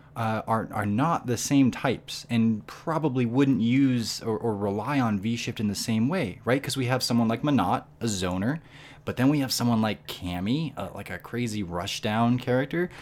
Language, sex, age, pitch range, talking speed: English, male, 20-39, 105-130 Hz, 195 wpm